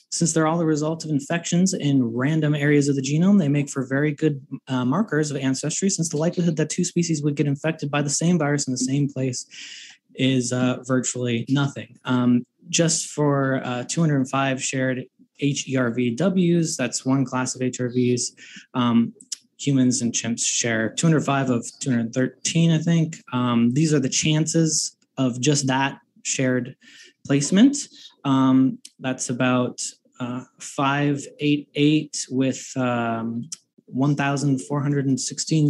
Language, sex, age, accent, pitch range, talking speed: English, male, 20-39, American, 130-160 Hz, 140 wpm